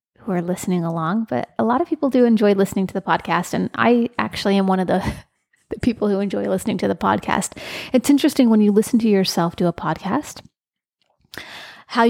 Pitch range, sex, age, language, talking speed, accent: 190-230 Hz, female, 30-49, English, 205 wpm, American